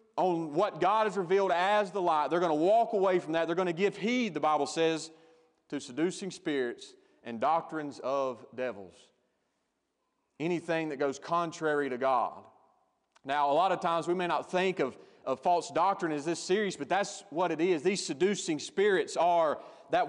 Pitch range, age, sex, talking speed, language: 160-205 Hz, 30-49, male, 185 wpm, English